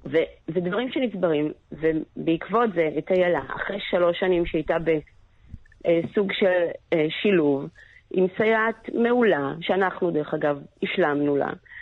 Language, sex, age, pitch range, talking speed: Hebrew, female, 40-59, 170-230 Hz, 110 wpm